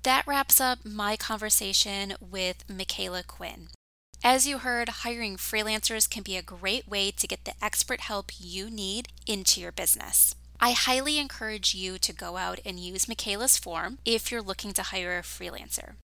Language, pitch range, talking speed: English, 190-245 Hz, 170 wpm